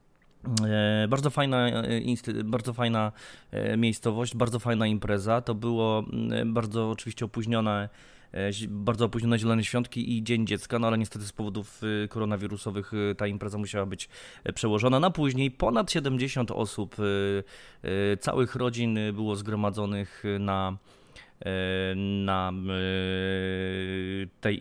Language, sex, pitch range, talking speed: Polish, male, 105-120 Hz, 105 wpm